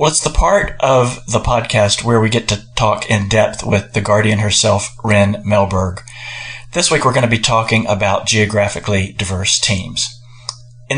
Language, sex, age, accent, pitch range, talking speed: English, male, 40-59, American, 105-125 Hz, 180 wpm